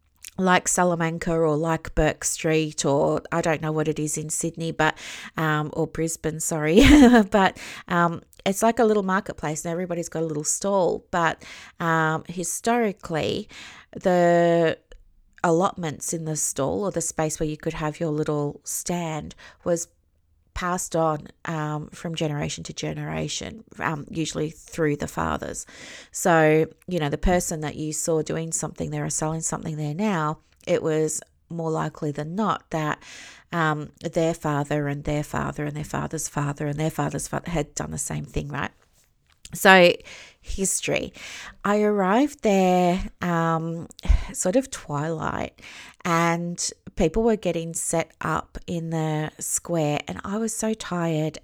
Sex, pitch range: female, 155-180 Hz